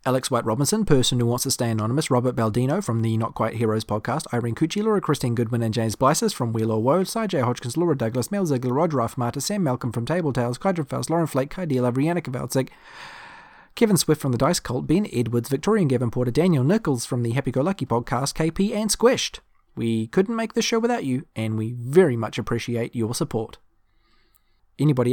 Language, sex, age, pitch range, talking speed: English, male, 30-49, 115-155 Hz, 200 wpm